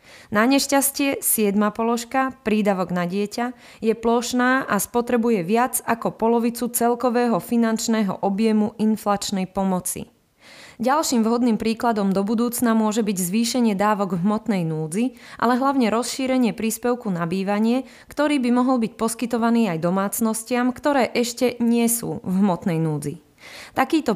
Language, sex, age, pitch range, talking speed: Slovak, female, 20-39, 205-240 Hz, 130 wpm